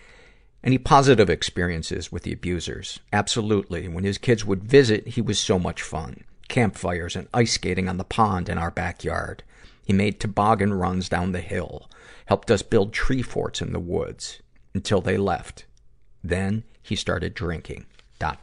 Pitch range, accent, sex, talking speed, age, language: 90-115 Hz, American, male, 165 wpm, 50-69, English